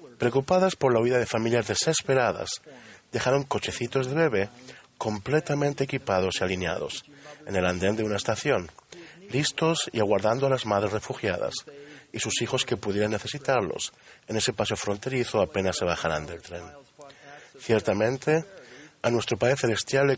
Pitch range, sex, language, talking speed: 105-140 Hz, male, Spanish, 145 wpm